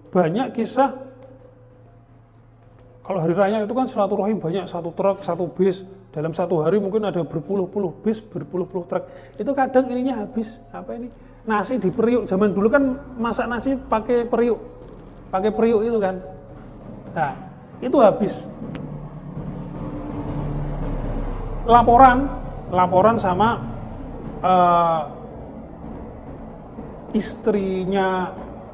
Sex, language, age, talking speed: male, Indonesian, 40-59, 105 wpm